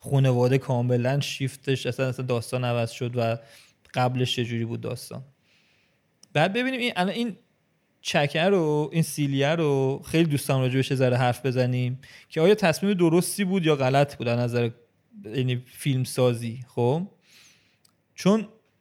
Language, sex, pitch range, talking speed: Persian, male, 125-150 Hz, 130 wpm